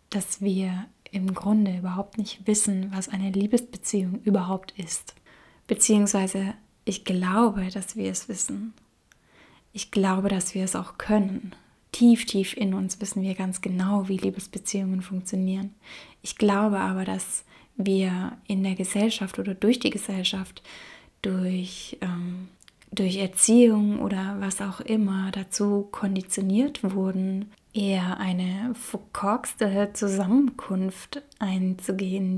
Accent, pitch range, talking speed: German, 190-210 Hz, 120 wpm